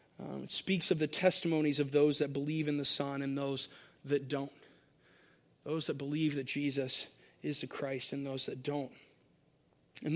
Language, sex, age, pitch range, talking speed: English, male, 30-49, 160-235 Hz, 175 wpm